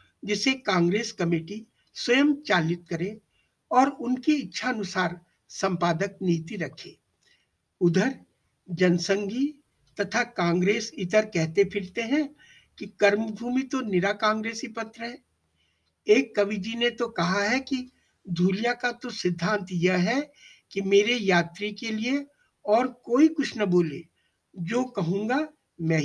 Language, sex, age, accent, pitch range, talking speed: Hindi, male, 60-79, native, 180-245 Hz, 120 wpm